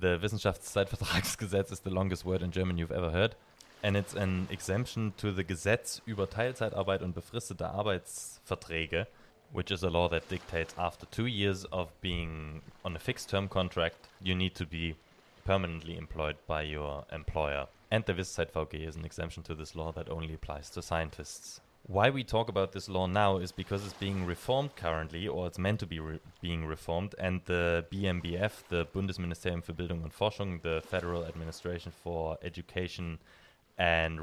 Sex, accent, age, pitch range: male, German, 20-39, 85-100 Hz